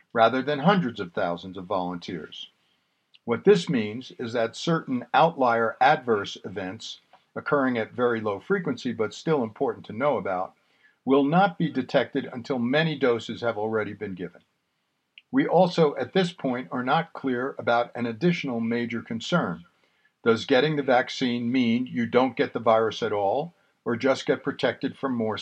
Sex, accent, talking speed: male, American, 165 wpm